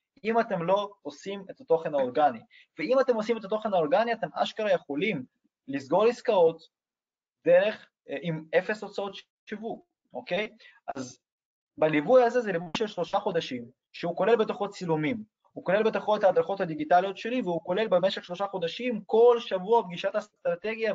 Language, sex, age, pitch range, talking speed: Hebrew, male, 20-39, 165-230 Hz, 150 wpm